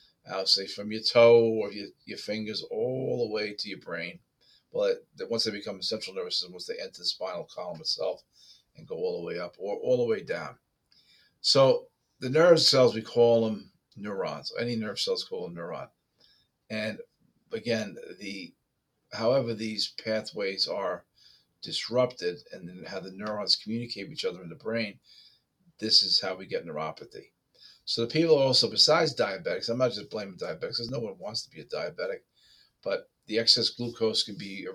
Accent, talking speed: American, 185 wpm